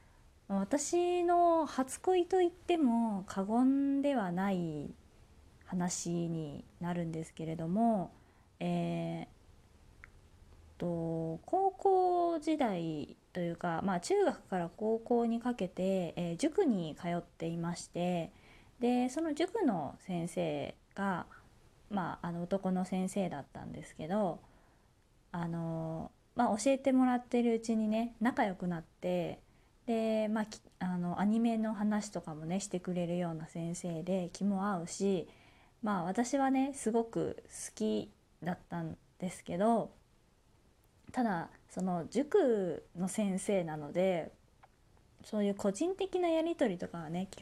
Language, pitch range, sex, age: Japanese, 170-235 Hz, female, 20-39